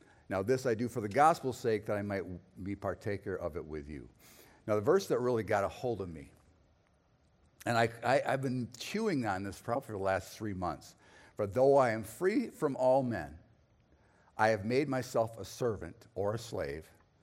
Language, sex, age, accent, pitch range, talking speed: English, male, 50-69, American, 95-125 Hz, 200 wpm